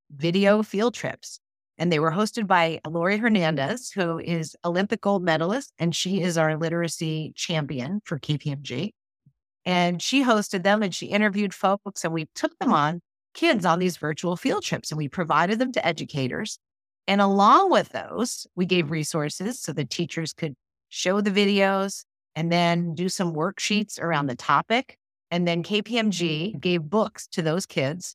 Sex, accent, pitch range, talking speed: female, American, 160-200 Hz, 165 wpm